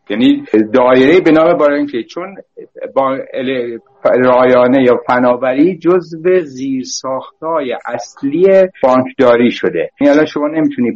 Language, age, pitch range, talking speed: Persian, 60-79, 130-185 Hz, 105 wpm